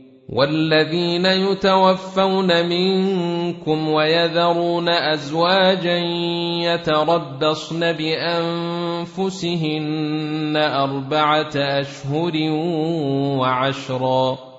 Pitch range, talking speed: 150-170 Hz, 40 wpm